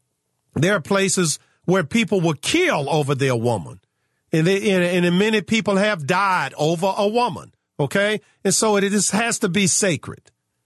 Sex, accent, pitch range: male, American, 140-195 Hz